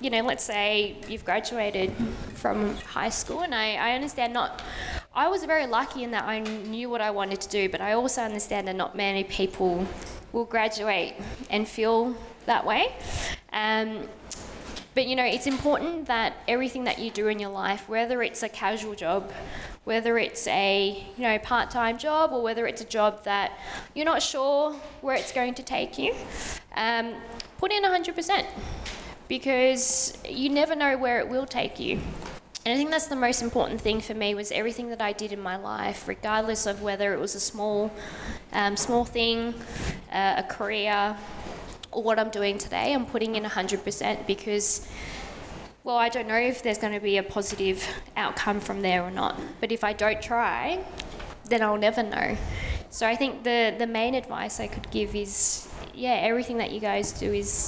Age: 20-39